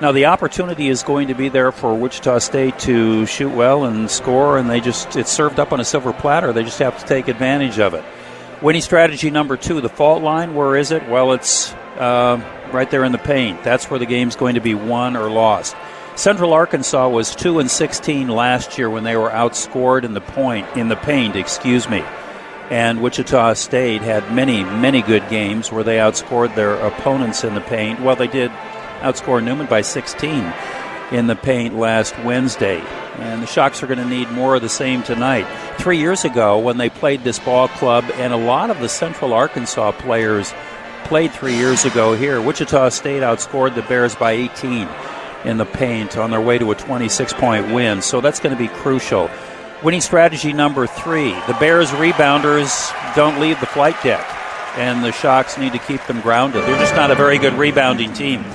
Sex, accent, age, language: male, American, 50-69, English